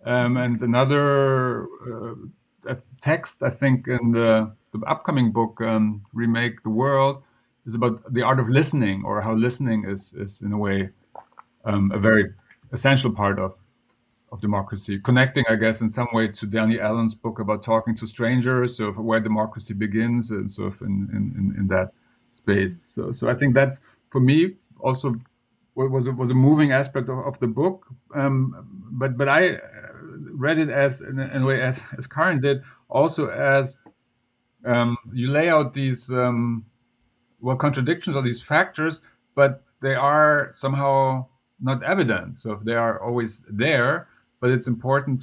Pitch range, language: 115-135 Hz, English